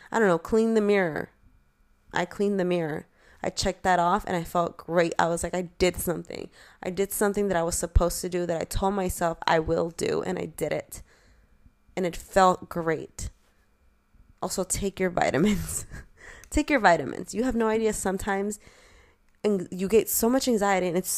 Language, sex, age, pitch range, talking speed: English, female, 20-39, 170-195 Hz, 195 wpm